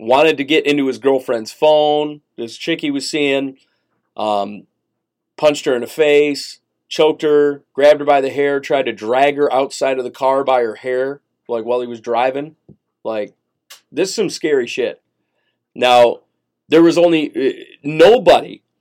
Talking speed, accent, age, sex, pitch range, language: 165 wpm, American, 40-59, male, 130-180 Hz, English